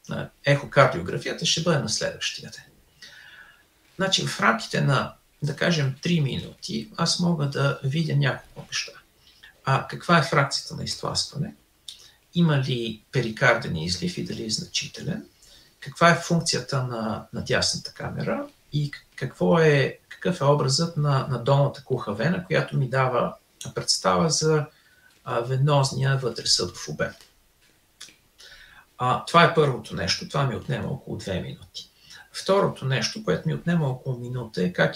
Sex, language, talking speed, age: male, Bulgarian, 140 wpm, 50-69